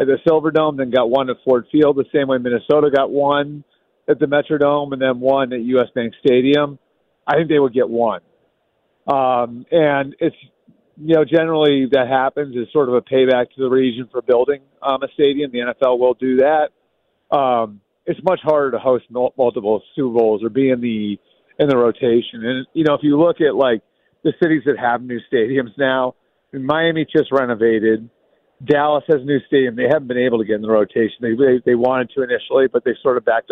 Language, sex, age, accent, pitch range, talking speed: English, male, 40-59, American, 125-150 Hz, 210 wpm